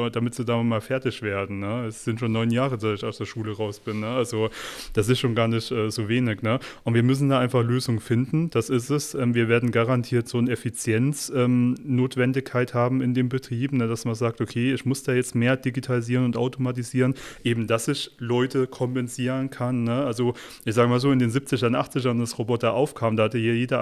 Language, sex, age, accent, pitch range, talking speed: German, male, 30-49, German, 115-130 Hz, 220 wpm